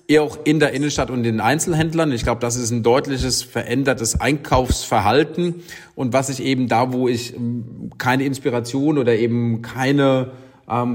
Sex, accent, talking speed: male, German, 160 wpm